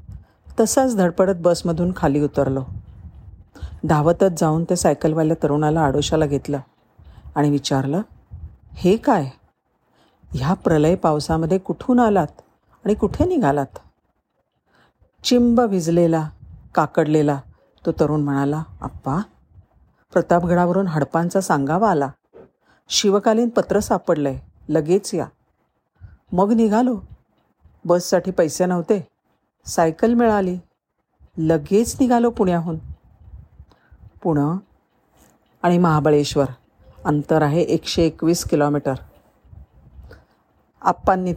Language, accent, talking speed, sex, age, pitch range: Marathi, native, 85 wpm, female, 50-69, 145-185 Hz